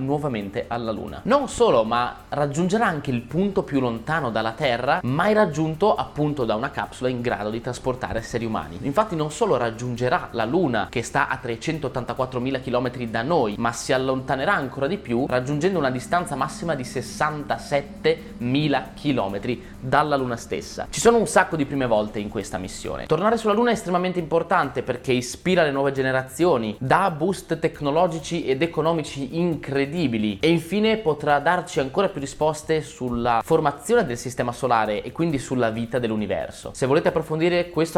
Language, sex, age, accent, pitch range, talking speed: Italian, male, 20-39, native, 120-160 Hz, 165 wpm